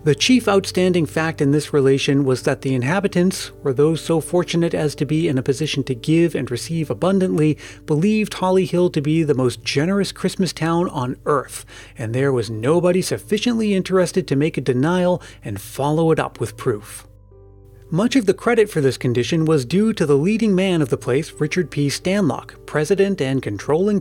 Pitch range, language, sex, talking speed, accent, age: 130-185 Hz, English, male, 190 wpm, American, 30-49